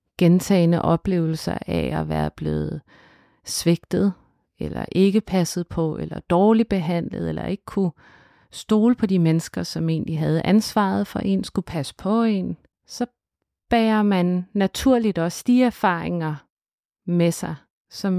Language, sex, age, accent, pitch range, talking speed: Danish, female, 30-49, native, 160-195 Hz, 140 wpm